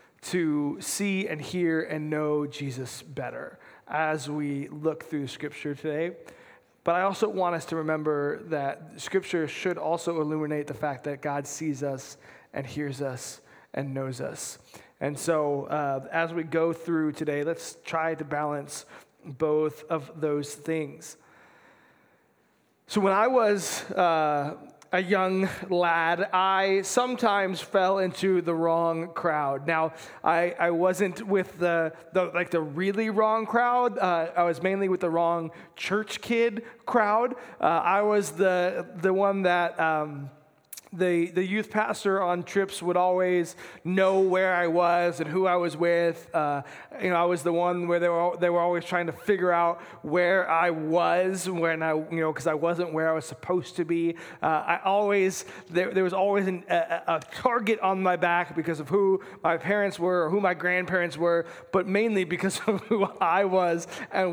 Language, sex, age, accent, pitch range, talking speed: English, male, 20-39, American, 160-190 Hz, 170 wpm